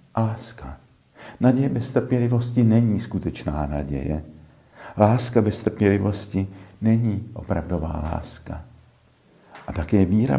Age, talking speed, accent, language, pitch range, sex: 60-79, 100 wpm, native, Czech, 90-120 Hz, male